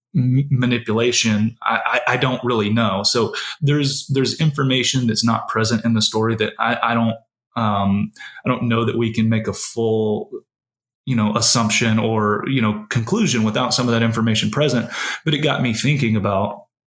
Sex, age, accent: male, 30-49, American